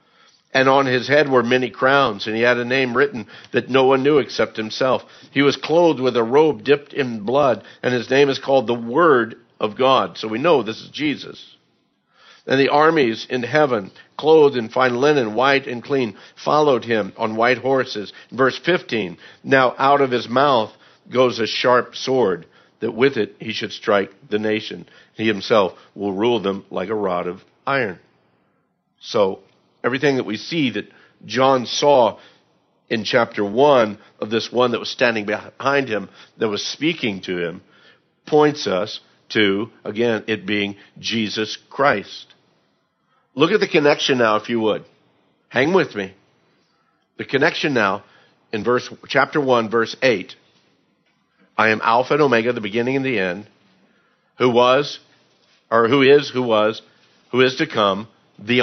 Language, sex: English, male